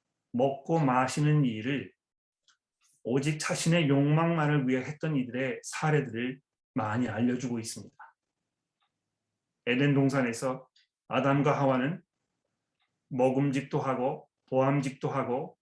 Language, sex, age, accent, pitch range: Korean, male, 30-49, native, 135-155 Hz